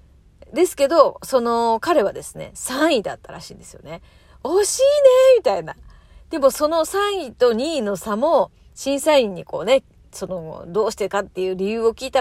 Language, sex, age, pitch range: Japanese, female, 40-59, 190-310 Hz